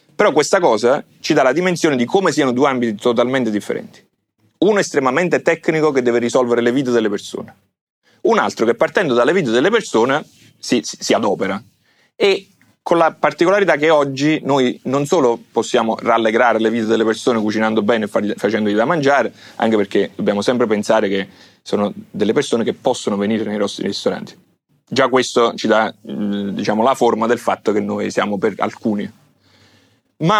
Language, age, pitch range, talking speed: Italian, 30-49, 105-120 Hz, 170 wpm